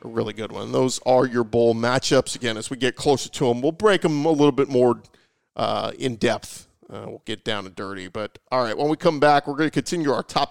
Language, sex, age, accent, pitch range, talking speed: English, male, 40-59, American, 130-160 Hz, 255 wpm